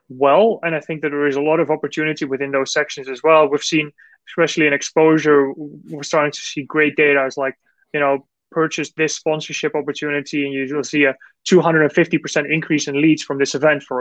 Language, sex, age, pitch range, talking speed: English, male, 20-39, 145-175 Hz, 200 wpm